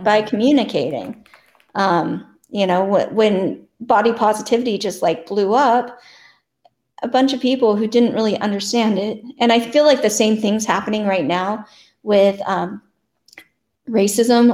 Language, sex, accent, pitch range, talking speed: English, female, American, 195-230 Hz, 145 wpm